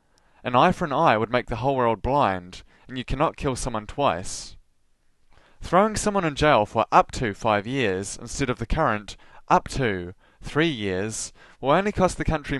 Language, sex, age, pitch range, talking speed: English, male, 20-39, 105-150 Hz, 185 wpm